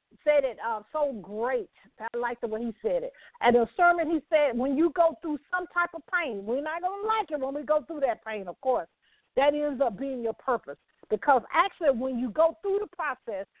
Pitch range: 245-360 Hz